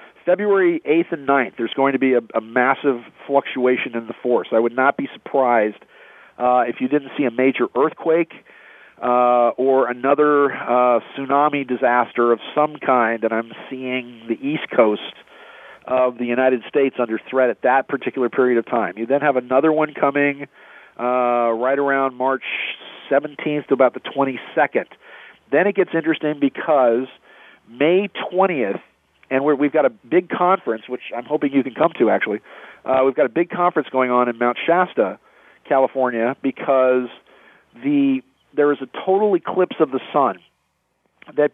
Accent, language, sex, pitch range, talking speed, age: American, English, male, 125-155 Hz, 165 wpm, 40-59